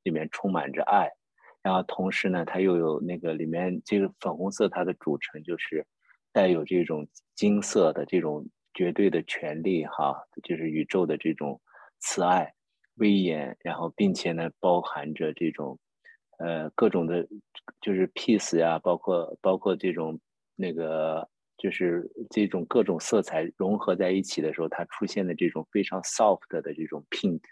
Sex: male